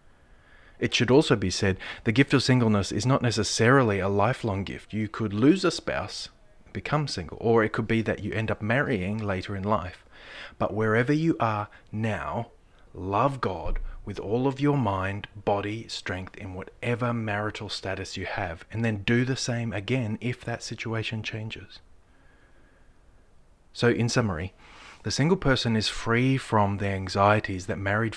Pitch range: 95-115 Hz